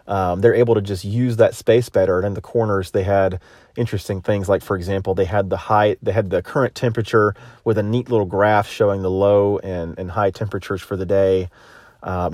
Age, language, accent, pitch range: 30-49, English, American, 95-115 Hz